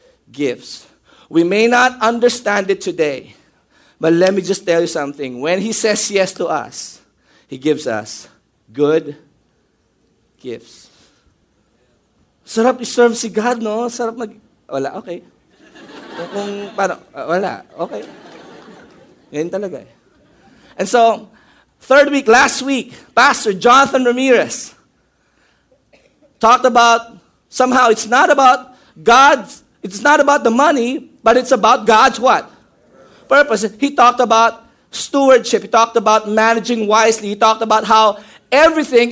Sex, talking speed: male, 110 wpm